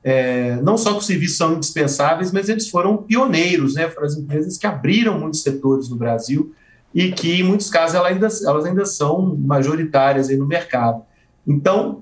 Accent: Brazilian